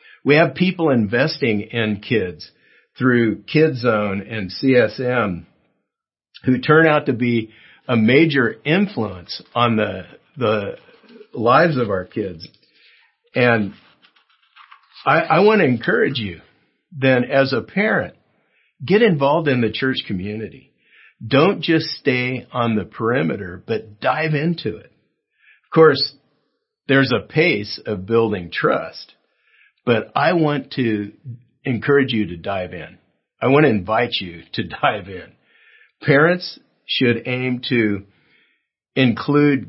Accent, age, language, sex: American, 50-69, English, male